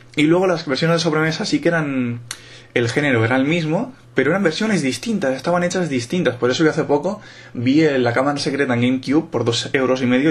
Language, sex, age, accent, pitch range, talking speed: Spanish, male, 20-39, Spanish, 115-135 Hz, 215 wpm